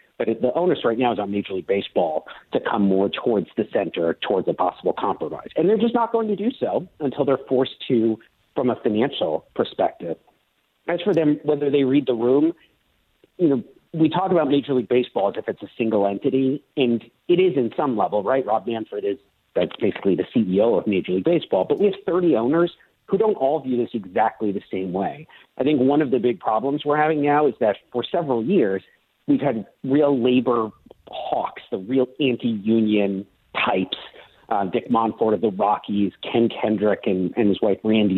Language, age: English, 50-69